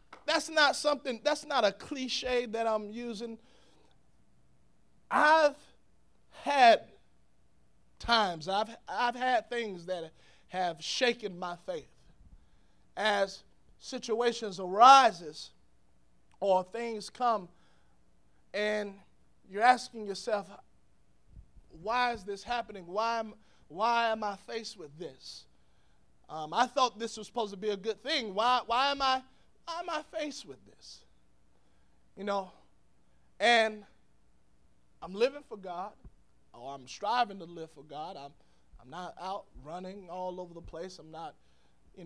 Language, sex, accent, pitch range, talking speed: English, male, American, 155-235 Hz, 130 wpm